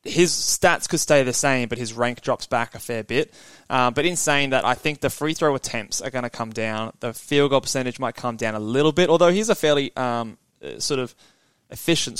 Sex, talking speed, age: male, 235 wpm, 20-39